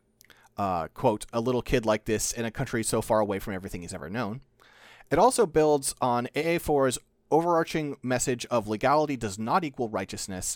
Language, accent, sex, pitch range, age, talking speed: English, American, male, 110-150 Hz, 30-49, 175 wpm